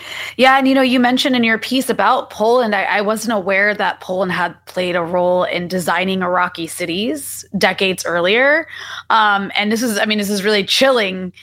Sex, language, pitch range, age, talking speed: female, English, 180-235 Hz, 20-39, 195 wpm